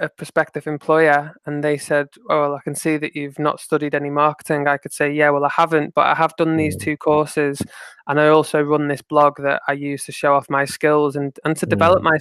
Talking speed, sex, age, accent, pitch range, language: 240 wpm, male, 20-39, British, 145-170 Hz, English